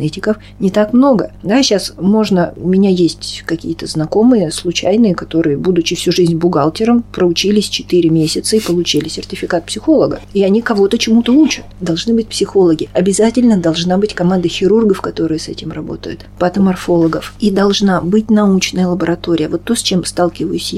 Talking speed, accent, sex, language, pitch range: 150 wpm, native, female, Russian, 170-220 Hz